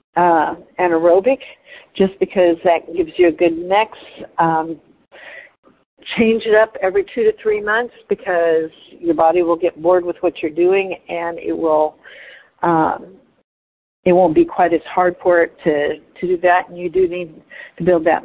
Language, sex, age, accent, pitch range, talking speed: English, female, 50-69, American, 170-230 Hz, 170 wpm